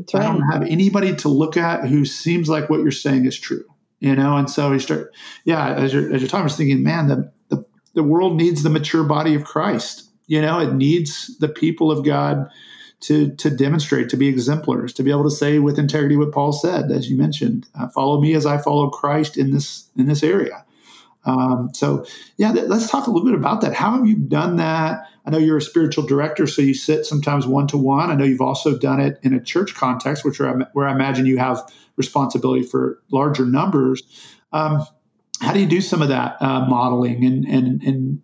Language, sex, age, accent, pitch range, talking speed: English, male, 40-59, American, 135-155 Hz, 225 wpm